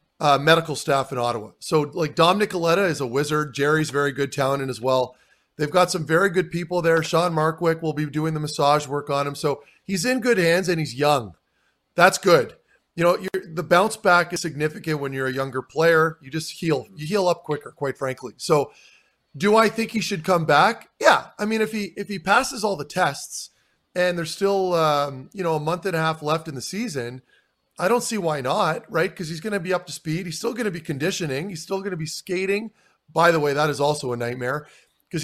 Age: 30-49